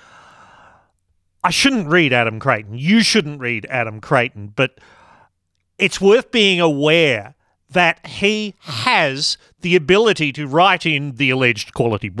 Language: English